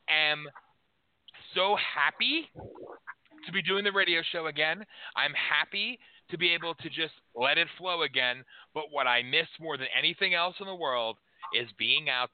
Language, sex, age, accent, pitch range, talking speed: English, male, 30-49, American, 145-180 Hz, 175 wpm